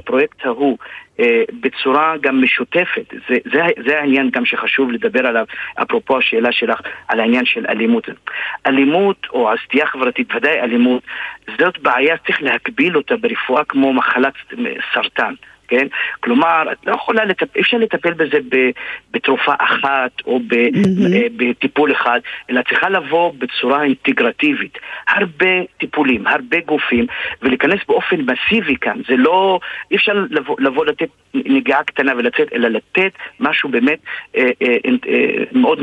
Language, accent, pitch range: Hebrew, Lebanese, 130-215 Hz